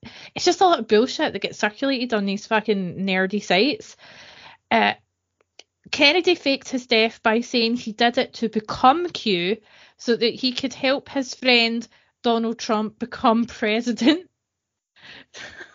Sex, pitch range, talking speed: female, 185-235 Hz, 145 wpm